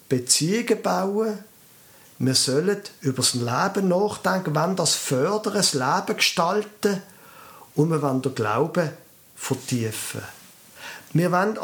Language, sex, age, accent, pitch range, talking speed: German, male, 50-69, German, 130-190 Hz, 115 wpm